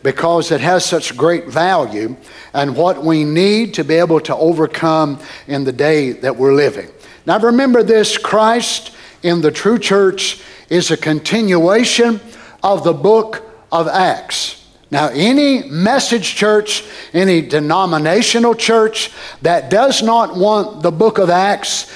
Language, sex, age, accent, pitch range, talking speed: English, male, 60-79, American, 175-230 Hz, 140 wpm